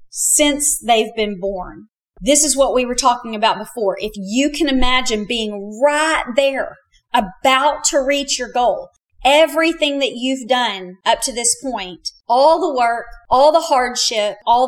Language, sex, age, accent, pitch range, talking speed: English, female, 40-59, American, 220-275 Hz, 160 wpm